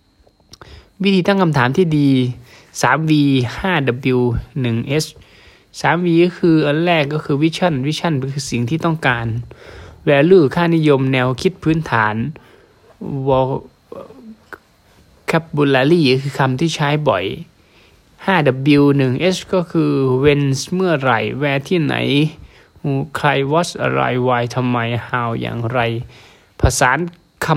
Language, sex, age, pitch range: Thai, male, 20-39, 120-165 Hz